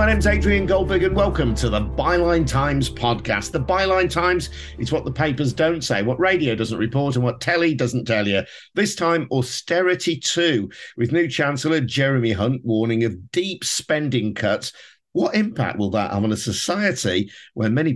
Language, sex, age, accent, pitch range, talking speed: English, male, 50-69, British, 105-150 Hz, 180 wpm